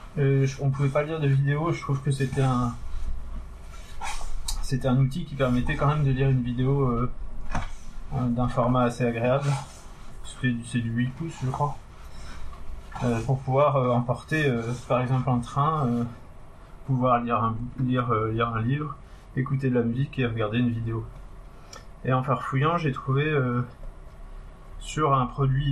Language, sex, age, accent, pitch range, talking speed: French, male, 20-39, French, 120-135 Hz, 155 wpm